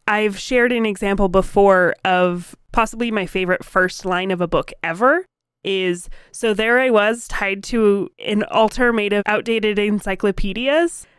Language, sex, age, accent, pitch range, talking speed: English, female, 20-39, American, 195-250 Hz, 150 wpm